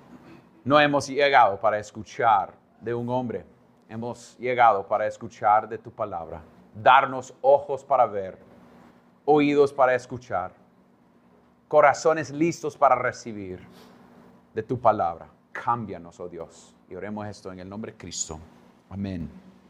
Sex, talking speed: male, 125 wpm